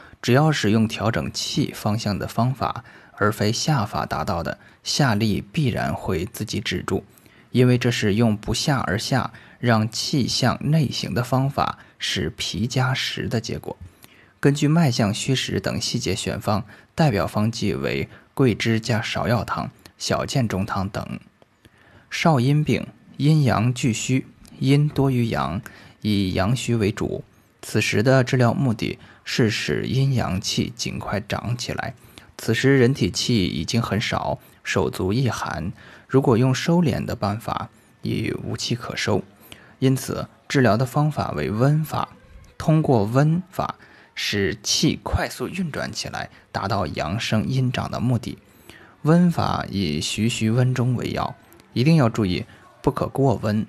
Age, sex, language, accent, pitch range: 20-39, male, Chinese, native, 105-130 Hz